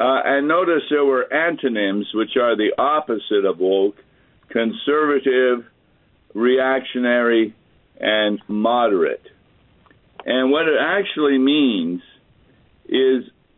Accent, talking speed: American, 95 wpm